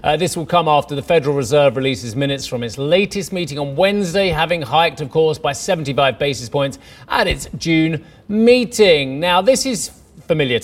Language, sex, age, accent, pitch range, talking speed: English, male, 30-49, British, 140-200 Hz, 180 wpm